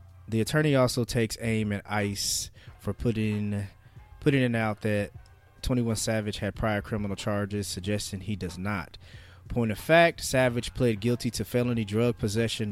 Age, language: 20-39, English